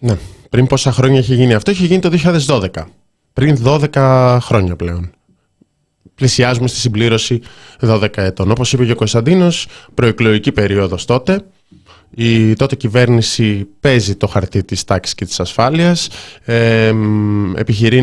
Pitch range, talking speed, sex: 105-130 Hz, 135 wpm, male